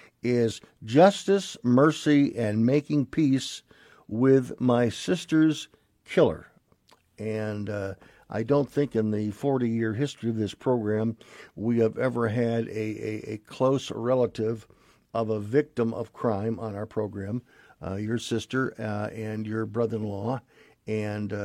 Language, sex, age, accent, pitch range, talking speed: English, male, 50-69, American, 105-125 Hz, 130 wpm